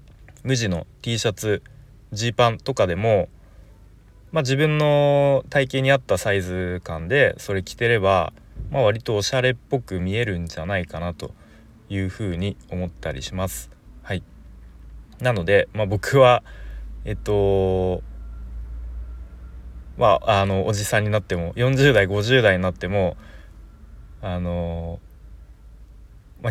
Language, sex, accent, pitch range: Japanese, male, native, 85-110 Hz